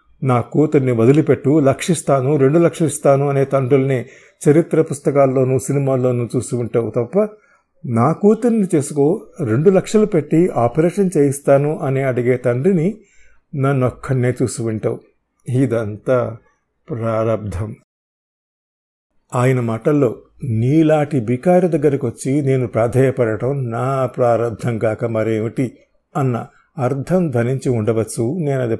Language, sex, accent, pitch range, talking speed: Telugu, male, native, 115-150 Hz, 100 wpm